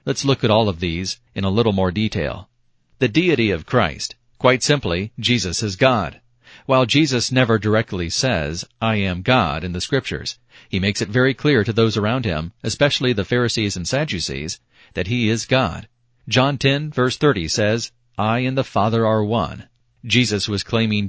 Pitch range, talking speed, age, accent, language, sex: 100-125 Hz, 180 wpm, 40-59, American, English, male